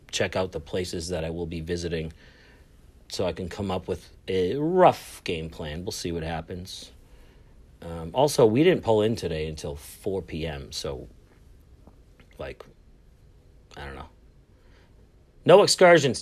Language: English